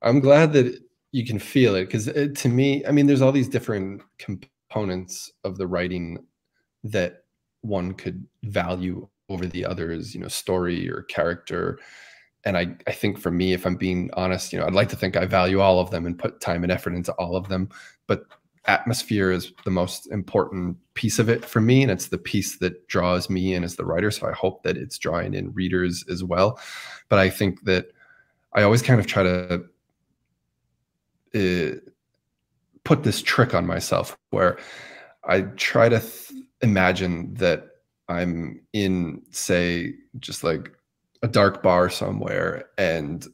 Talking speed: 175 wpm